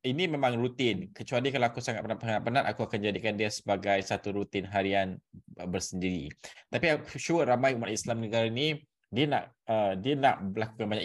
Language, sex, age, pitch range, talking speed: Malay, male, 20-39, 105-125 Hz, 175 wpm